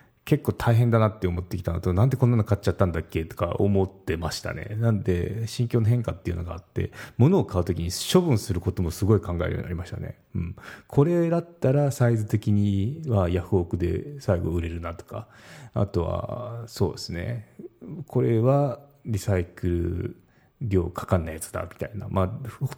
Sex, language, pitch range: male, Japanese, 95-120 Hz